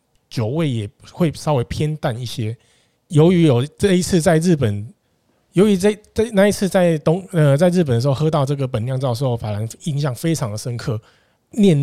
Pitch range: 120-165 Hz